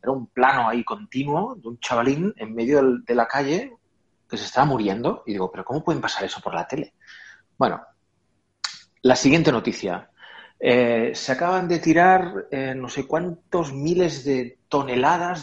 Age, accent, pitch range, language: 30-49, Spanish, 115-155 Hz, Spanish